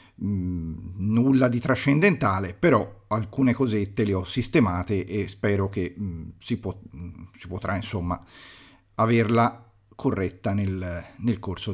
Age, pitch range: 40-59, 95-125 Hz